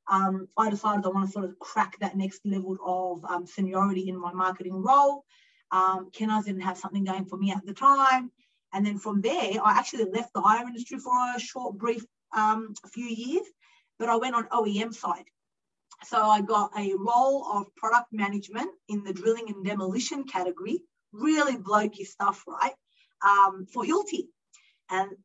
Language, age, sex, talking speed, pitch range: English, 30-49, female, 180 wpm, 195-245 Hz